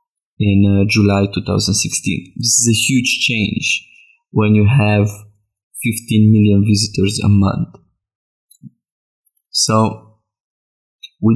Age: 20-39